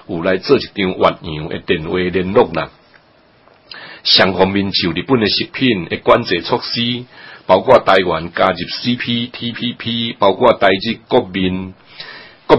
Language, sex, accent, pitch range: Chinese, male, Malaysian, 90-120 Hz